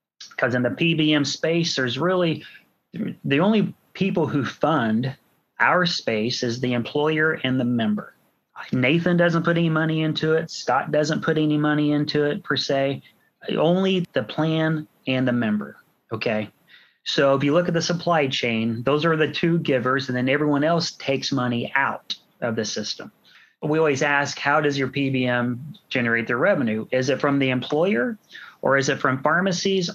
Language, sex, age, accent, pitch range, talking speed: English, male, 30-49, American, 125-155 Hz, 170 wpm